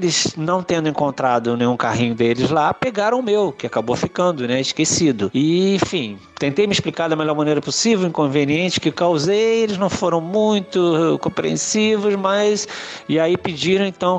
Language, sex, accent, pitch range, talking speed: Portuguese, male, Brazilian, 150-185 Hz, 165 wpm